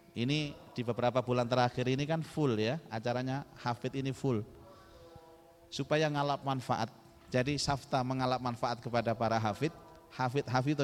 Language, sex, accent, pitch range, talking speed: Indonesian, male, native, 115-150 Hz, 135 wpm